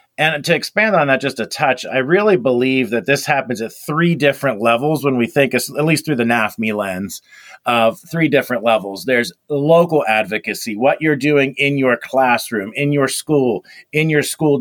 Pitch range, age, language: 120-140 Hz, 40-59, English